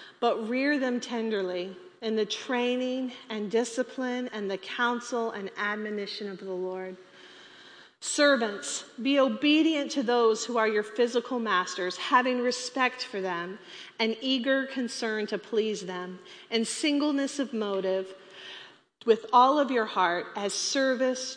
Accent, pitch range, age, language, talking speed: American, 200-255 Hz, 40-59, English, 135 wpm